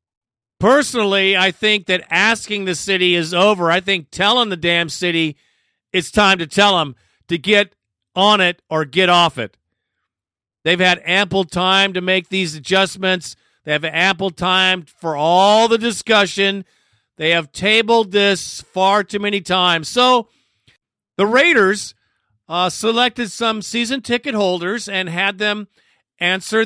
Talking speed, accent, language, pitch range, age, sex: 145 wpm, American, English, 175-220 Hz, 50-69, male